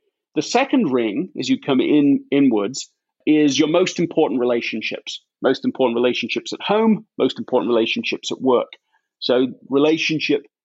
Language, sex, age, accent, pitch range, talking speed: English, male, 30-49, British, 140-220 Hz, 140 wpm